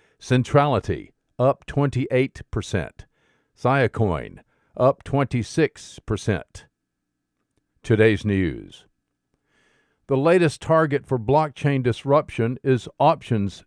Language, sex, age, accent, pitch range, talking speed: English, male, 50-69, American, 110-140 Hz, 80 wpm